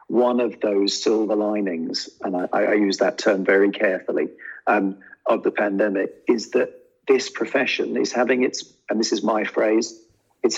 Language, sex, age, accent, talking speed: English, male, 40-59, British, 170 wpm